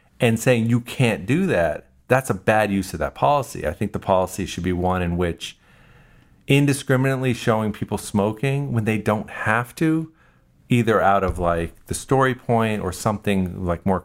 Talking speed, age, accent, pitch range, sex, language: 180 wpm, 40-59, American, 95-125 Hz, male, English